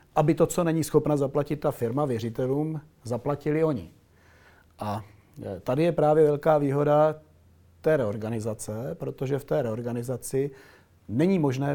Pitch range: 120-145 Hz